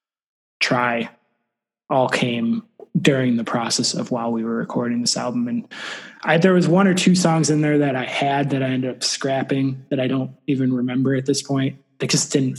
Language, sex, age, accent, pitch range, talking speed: English, male, 20-39, American, 130-155 Hz, 200 wpm